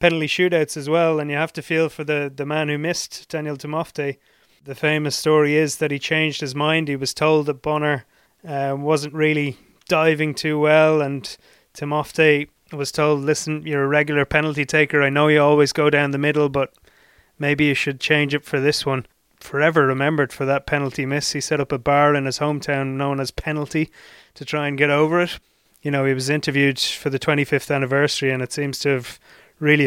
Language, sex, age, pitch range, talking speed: English, male, 20-39, 140-155 Hz, 205 wpm